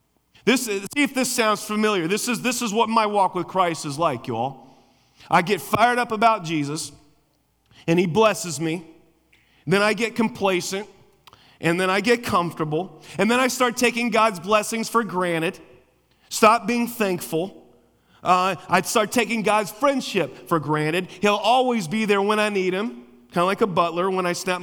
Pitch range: 130-200 Hz